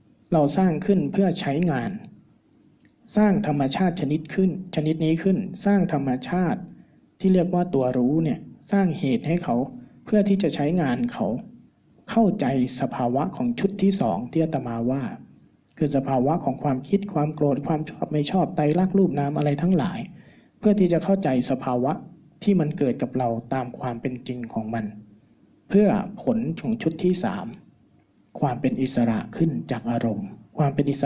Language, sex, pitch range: Thai, male, 130-185 Hz